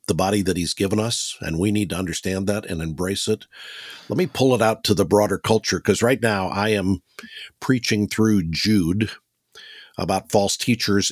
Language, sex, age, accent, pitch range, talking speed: English, male, 50-69, American, 95-110 Hz, 190 wpm